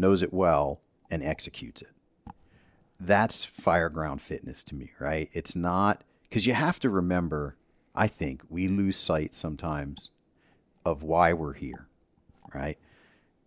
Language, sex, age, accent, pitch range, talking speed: English, male, 50-69, American, 80-100 Hz, 135 wpm